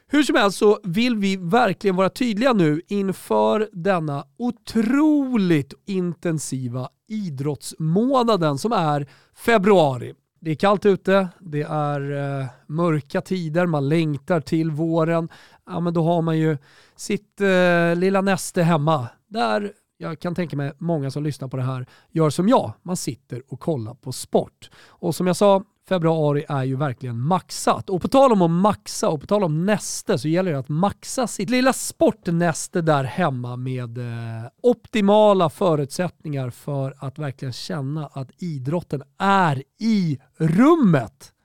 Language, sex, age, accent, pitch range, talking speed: Swedish, male, 40-59, native, 145-205 Hz, 150 wpm